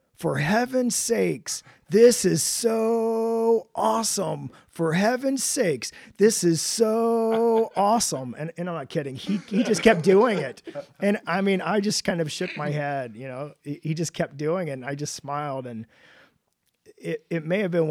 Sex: male